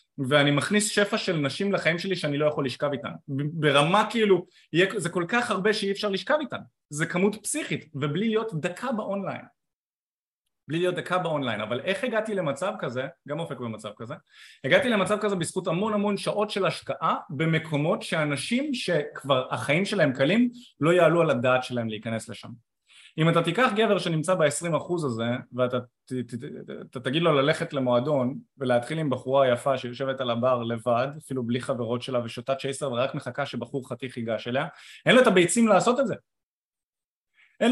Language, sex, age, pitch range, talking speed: Hebrew, male, 20-39, 130-195 Hz, 165 wpm